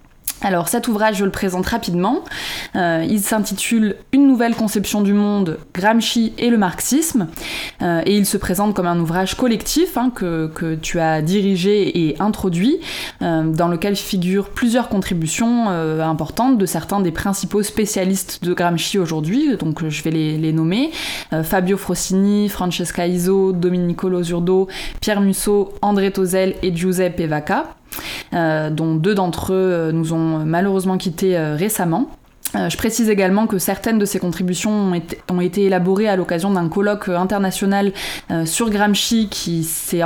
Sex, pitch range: female, 170-215 Hz